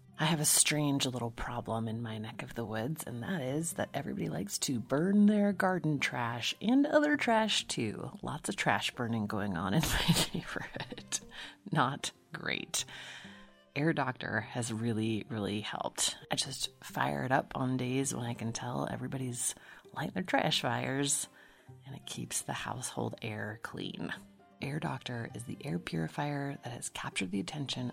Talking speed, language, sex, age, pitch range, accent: 165 wpm, English, female, 30-49, 115-160 Hz, American